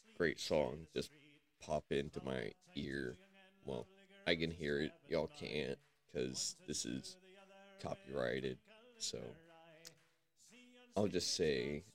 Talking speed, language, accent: 110 wpm, English, American